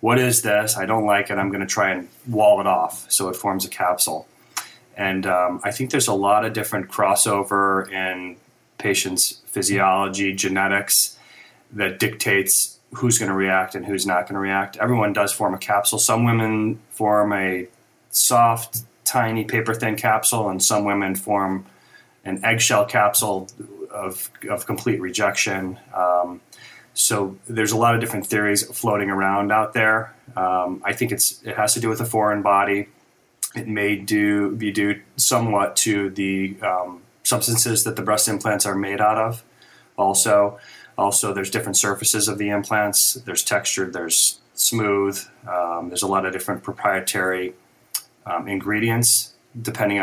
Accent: American